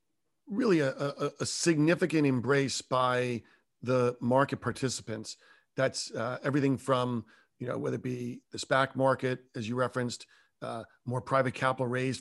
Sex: male